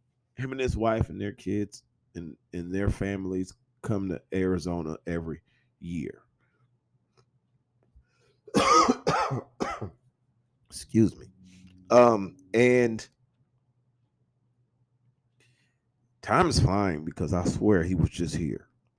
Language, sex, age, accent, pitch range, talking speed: English, male, 40-59, American, 90-125 Hz, 95 wpm